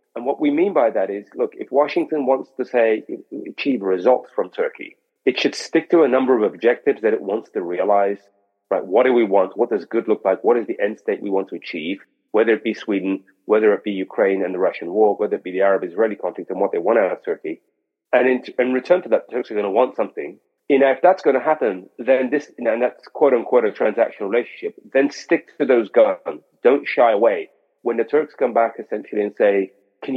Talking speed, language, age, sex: 235 wpm, English, 40-59, male